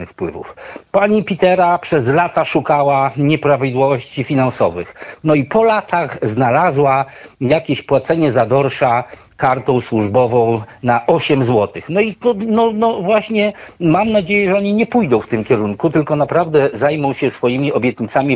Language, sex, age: Polish, male, 50-69